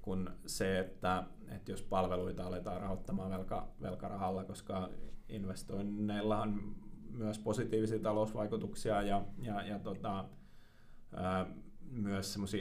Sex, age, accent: male, 30-49, native